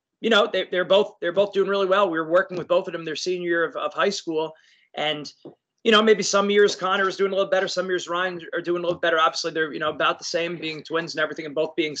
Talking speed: 290 wpm